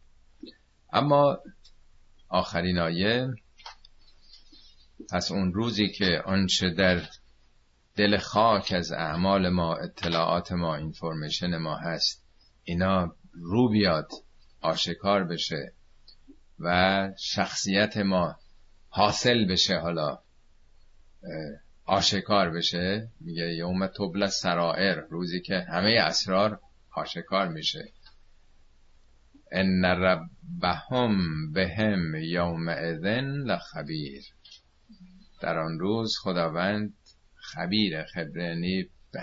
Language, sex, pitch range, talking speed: Persian, male, 80-100 Hz, 85 wpm